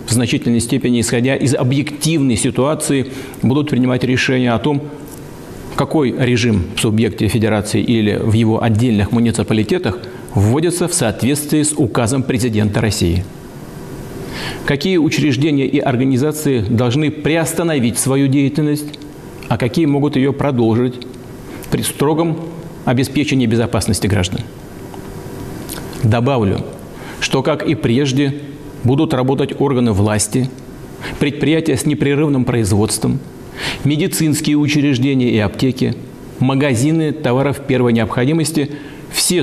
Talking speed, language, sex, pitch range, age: 105 wpm, Russian, male, 115-145 Hz, 40-59